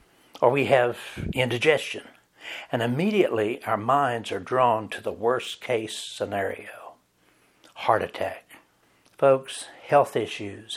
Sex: male